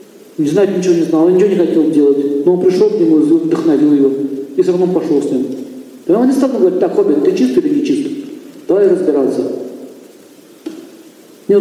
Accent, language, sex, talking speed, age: native, Russian, male, 195 wpm, 50-69